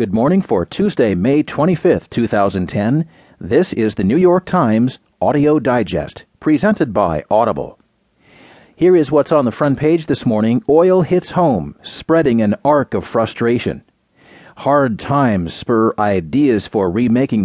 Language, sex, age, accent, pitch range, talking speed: English, male, 40-59, American, 115-155 Hz, 140 wpm